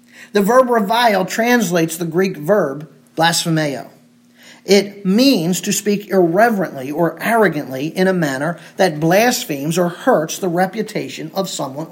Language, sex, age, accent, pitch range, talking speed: English, male, 50-69, American, 170-240 Hz, 130 wpm